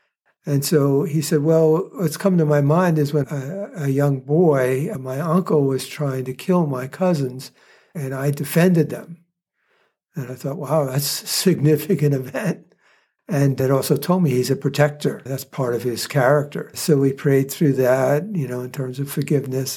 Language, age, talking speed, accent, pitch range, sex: English, 60-79, 180 wpm, American, 135-160 Hz, male